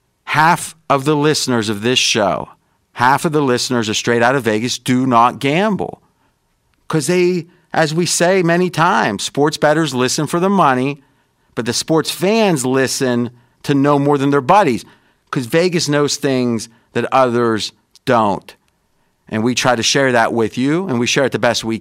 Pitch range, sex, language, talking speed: 120-160 Hz, male, English, 180 wpm